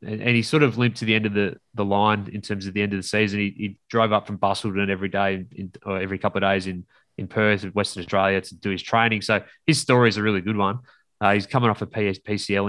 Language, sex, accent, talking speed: English, male, Australian, 275 wpm